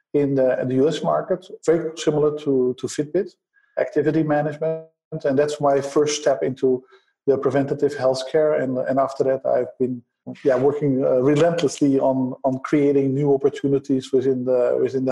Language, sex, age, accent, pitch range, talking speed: English, male, 50-69, Dutch, 130-160 Hz, 155 wpm